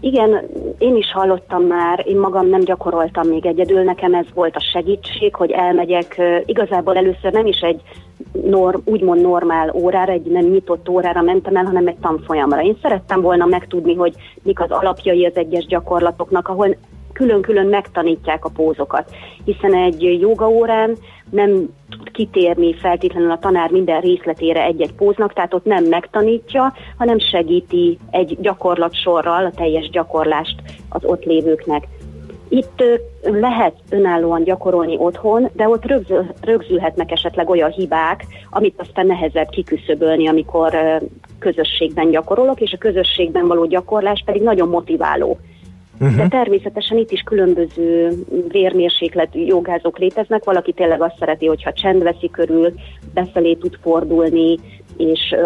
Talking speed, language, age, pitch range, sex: 135 wpm, Hungarian, 30-49, 165-200 Hz, female